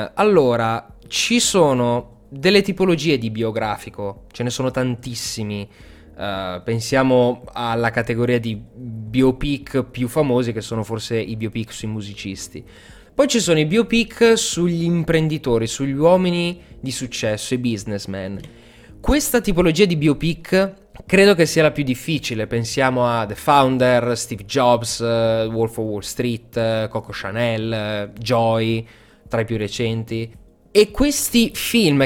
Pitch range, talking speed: 115-165 Hz, 135 wpm